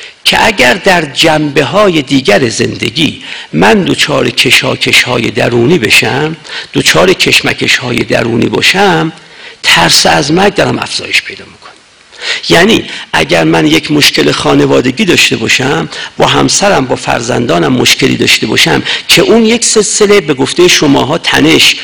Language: Persian